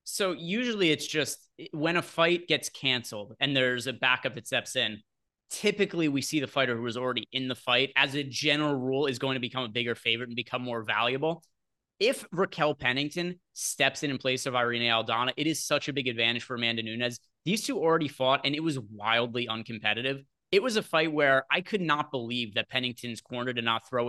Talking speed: 210 wpm